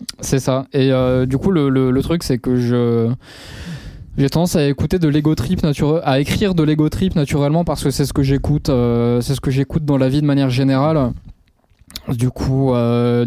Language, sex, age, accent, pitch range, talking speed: French, male, 20-39, French, 130-150 Hz, 215 wpm